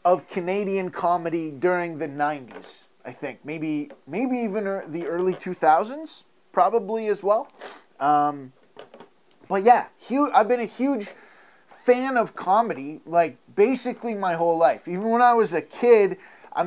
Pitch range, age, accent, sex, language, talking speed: 165-210 Hz, 20-39, American, male, English, 145 wpm